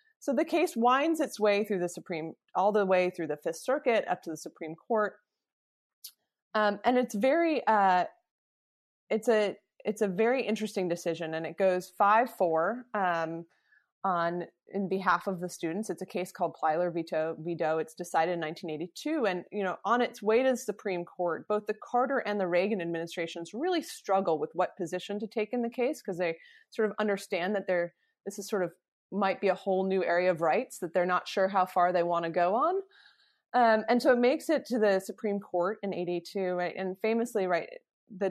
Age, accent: 30-49, American